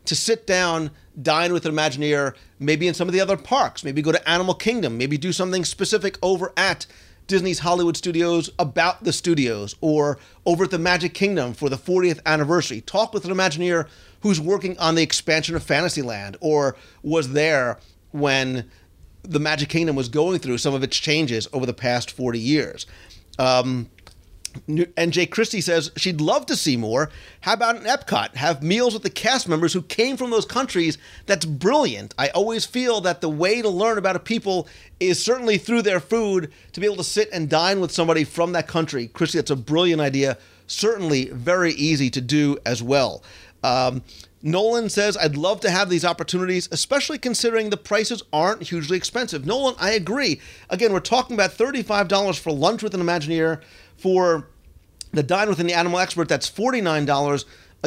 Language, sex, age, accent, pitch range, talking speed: English, male, 40-59, American, 140-195 Hz, 180 wpm